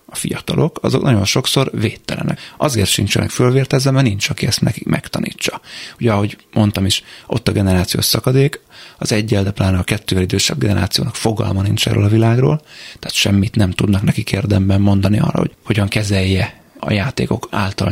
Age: 30-49